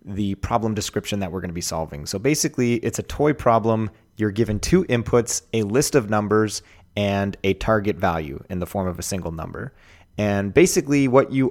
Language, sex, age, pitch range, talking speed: English, male, 30-49, 95-120 Hz, 200 wpm